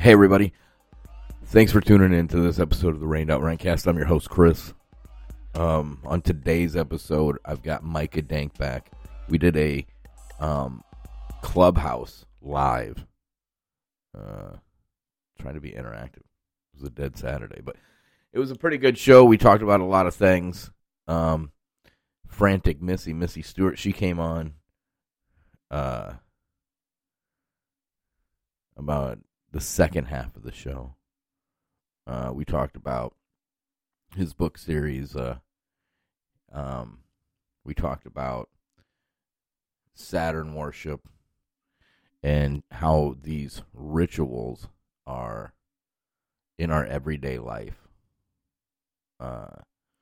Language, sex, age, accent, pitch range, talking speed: English, male, 30-49, American, 70-85 Hz, 115 wpm